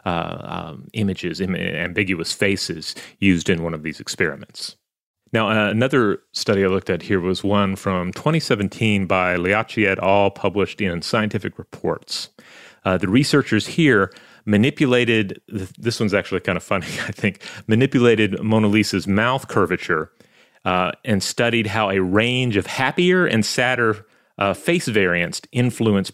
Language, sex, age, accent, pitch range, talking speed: English, male, 30-49, American, 95-115 Hz, 140 wpm